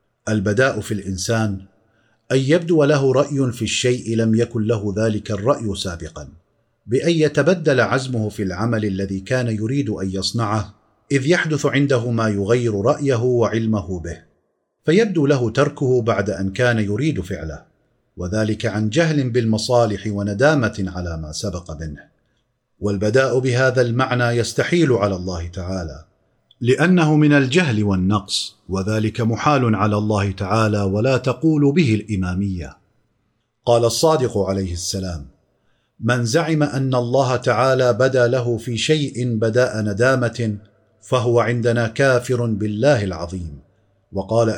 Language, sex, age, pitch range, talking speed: Arabic, male, 40-59, 105-130 Hz, 120 wpm